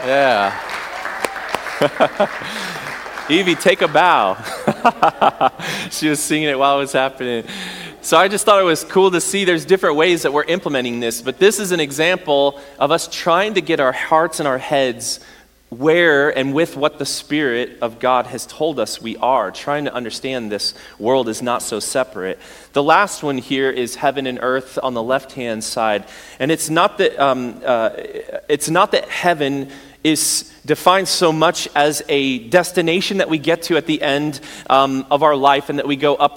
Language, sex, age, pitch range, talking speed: English, male, 30-49, 130-160 Hz, 180 wpm